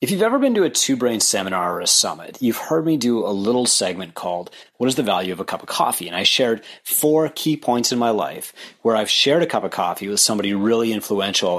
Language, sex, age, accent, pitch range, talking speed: English, male, 30-49, American, 105-130 Hz, 255 wpm